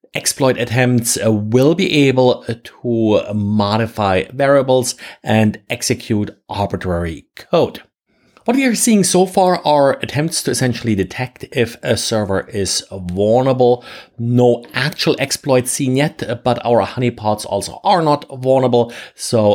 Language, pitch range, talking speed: English, 105-135 Hz, 130 wpm